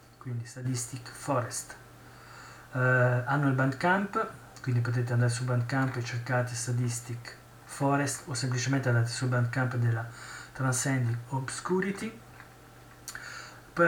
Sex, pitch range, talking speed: male, 120-140 Hz, 110 wpm